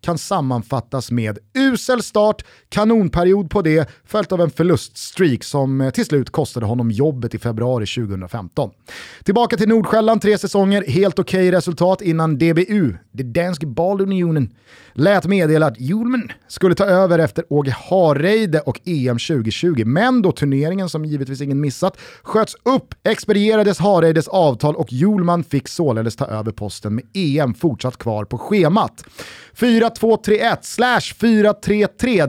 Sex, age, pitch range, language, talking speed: male, 30-49, 140-195 Hz, Swedish, 140 wpm